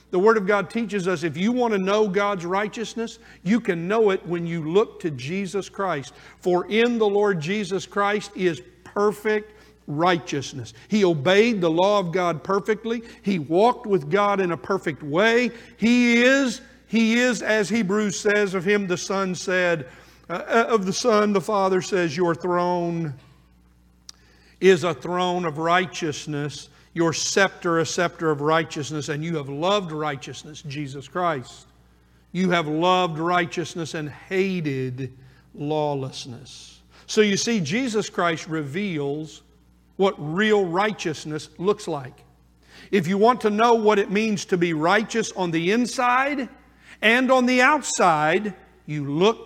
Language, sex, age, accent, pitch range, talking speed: English, male, 50-69, American, 155-210 Hz, 150 wpm